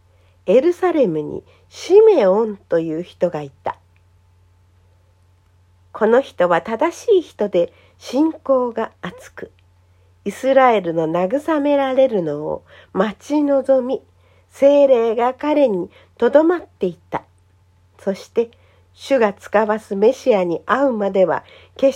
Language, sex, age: Japanese, female, 50-69